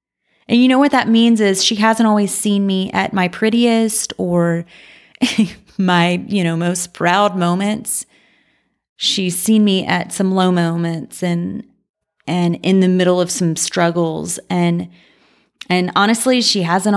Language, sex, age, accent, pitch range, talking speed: English, female, 30-49, American, 175-215 Hz, 150 wpm